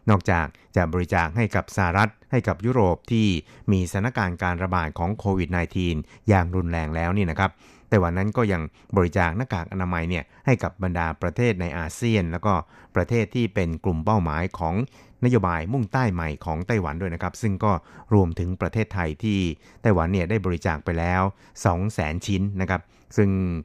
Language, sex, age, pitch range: Thai, male, 60-79, 85-105 Hz